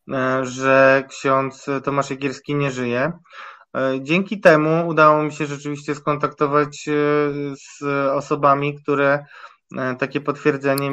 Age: 20-39